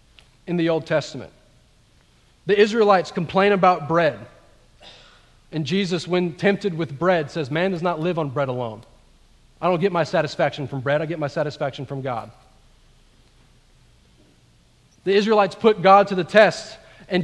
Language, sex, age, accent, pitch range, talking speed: English, male, 40-59, American, 145-180 Hz, 155 wpm